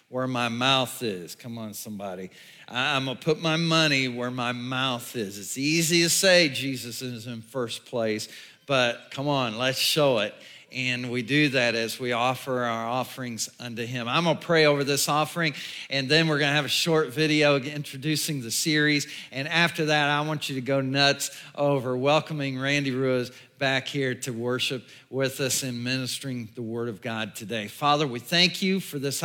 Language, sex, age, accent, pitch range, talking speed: English, male, 50-69, American, 130-165 Hz, 185 wpm